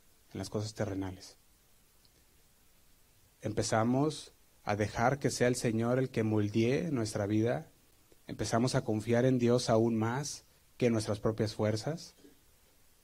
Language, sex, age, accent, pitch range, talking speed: Spanish, male, 30-49, Mexican, 110-150 Hz, 130 wpm